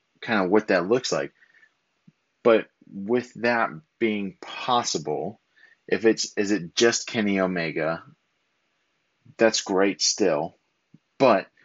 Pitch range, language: 90-110 Hz, English